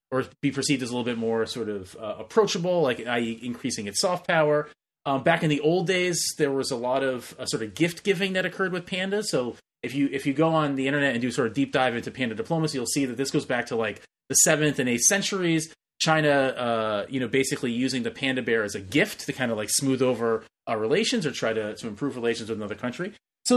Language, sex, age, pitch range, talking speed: English, male, 30-49, 115-160 Hz, 250 wpm